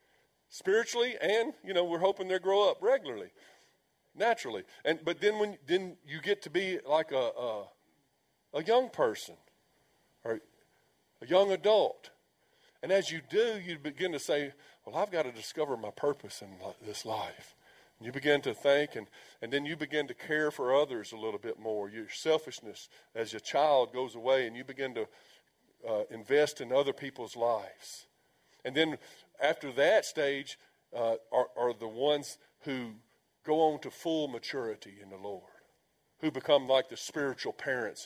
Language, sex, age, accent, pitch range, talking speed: English, male, 50-69, American, 125-170 Hz, 170 wpm